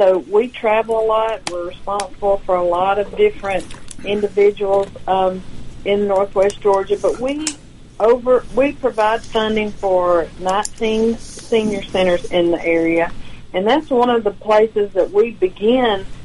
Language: English